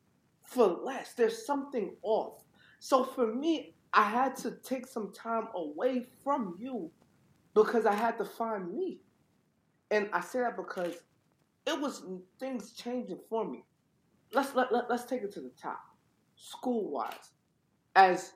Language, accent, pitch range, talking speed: English, American, 175-265 Hz, 150 wpm